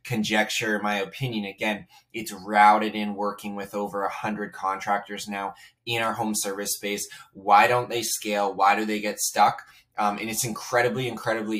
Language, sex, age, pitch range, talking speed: English, male, 20-39, 100-110 Hz, 175 wpm